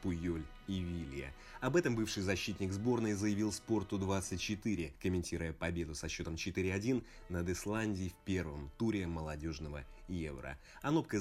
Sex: male